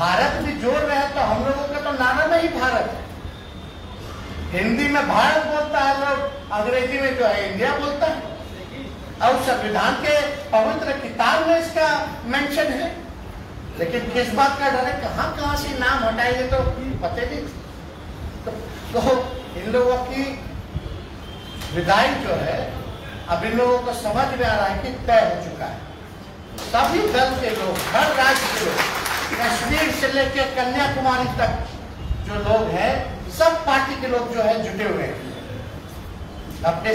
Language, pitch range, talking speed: Hindi, 215-275 Hz, 145 wpm